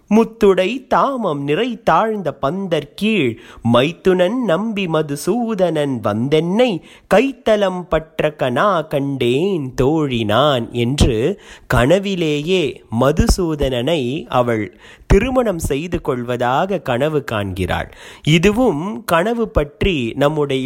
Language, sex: Tamil, male